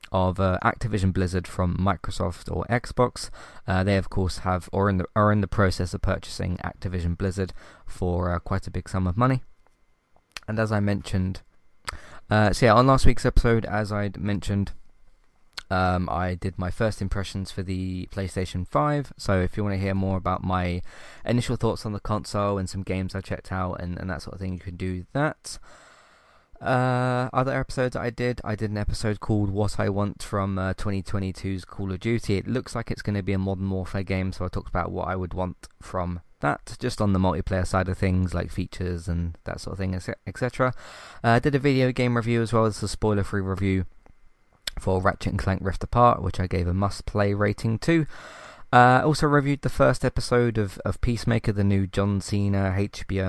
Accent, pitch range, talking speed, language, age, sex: British, 95-115 Hz, 205 wpm, English, 20-39, male